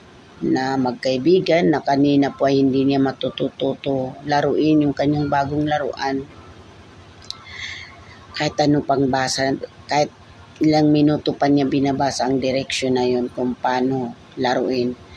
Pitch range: 125-145 Hz